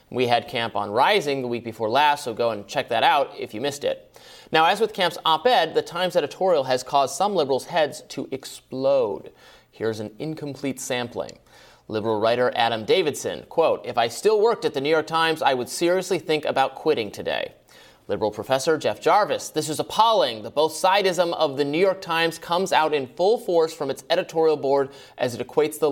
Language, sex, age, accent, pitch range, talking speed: English, male, 30-49, American, 130-190 Hz, 200 wpm